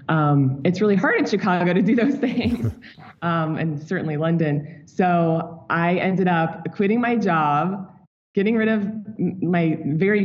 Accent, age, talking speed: American, 20-39, 160 wpm